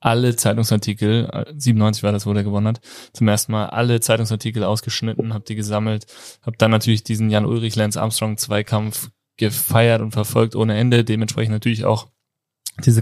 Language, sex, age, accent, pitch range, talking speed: German, male, 20-39, German, 110-125 Hz, 145 wpm